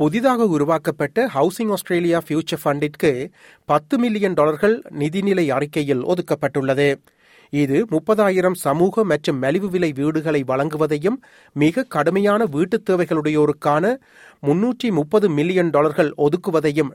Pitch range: 145-185 Hz